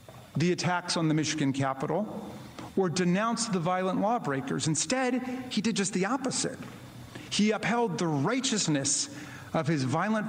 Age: 40-59